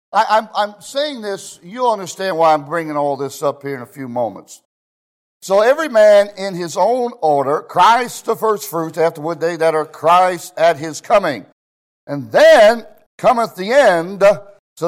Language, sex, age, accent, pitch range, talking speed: English, male, 60-79, American, 150-210 Hz, 175 wpm